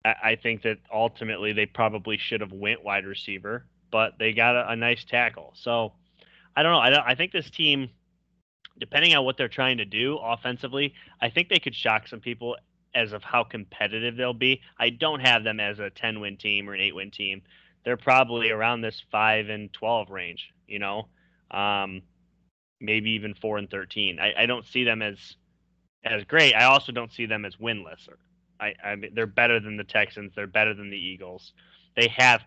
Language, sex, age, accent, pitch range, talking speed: English, male, 20-39, American, 105-120 Hz, 200 wpm